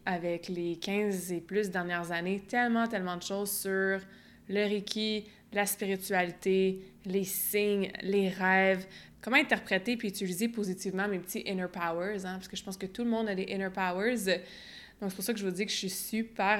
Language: French